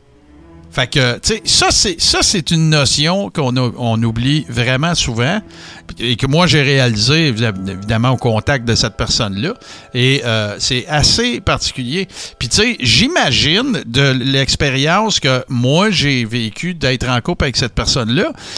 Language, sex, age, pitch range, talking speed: French, male, 60-79, 110-145 Hz, 130 wpm